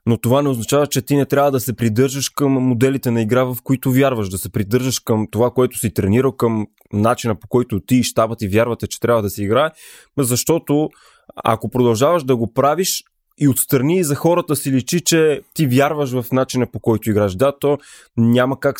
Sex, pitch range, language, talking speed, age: male, 120-145 Hz, Bulgarian, 205 wpm, 20-39